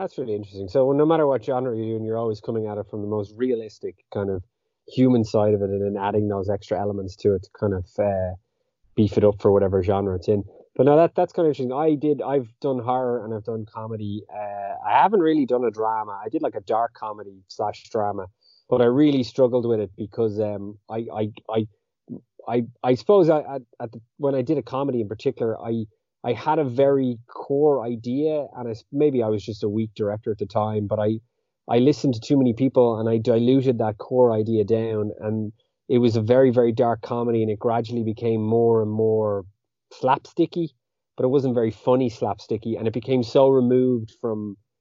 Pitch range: 105-125 Hz